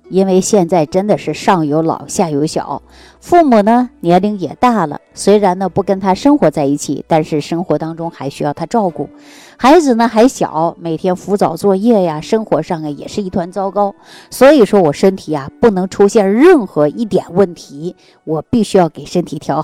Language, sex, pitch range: Chinese, female, 160-220 Hz